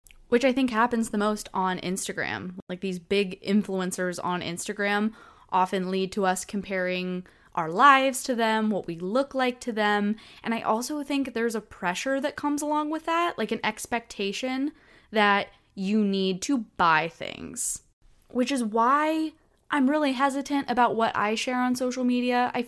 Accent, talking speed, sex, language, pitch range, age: American, 170 wpm, female, English, 190-255 Hz, 20-39